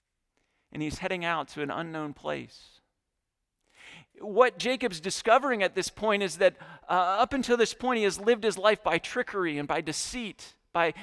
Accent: American